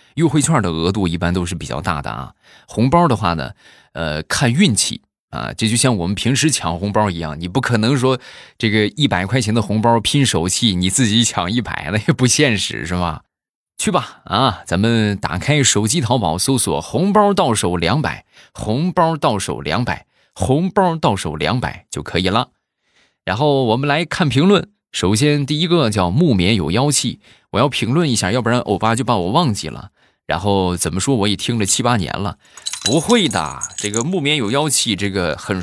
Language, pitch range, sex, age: Chinese, 95-140 Hz, male, 20-39